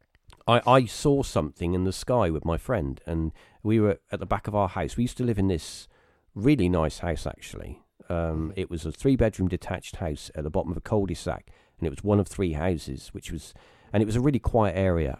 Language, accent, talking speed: English, British, 230 wpm